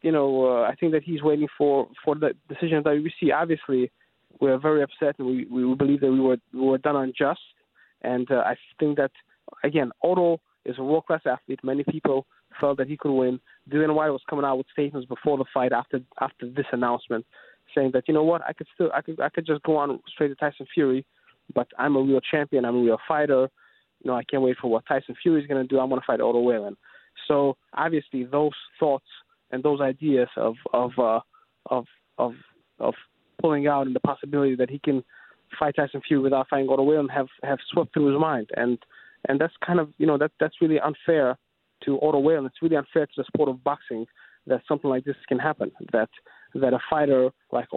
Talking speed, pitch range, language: 220 wpm, 130-150 Hz, English